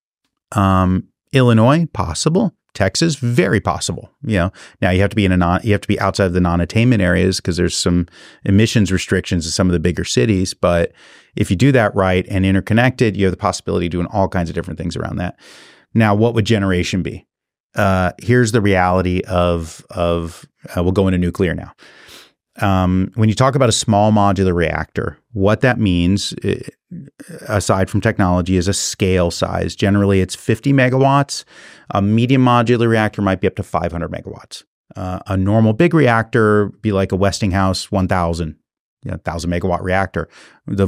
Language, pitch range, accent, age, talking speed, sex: English, 90-115 Hz, American, 30-49, 180 wpm, male